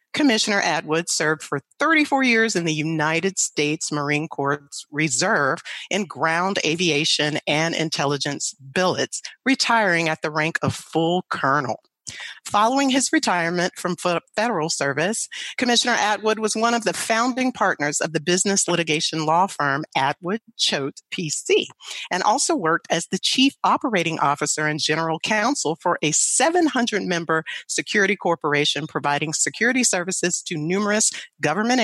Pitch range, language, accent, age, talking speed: 155-220 Hz, English, American, 40-59, 135 wpm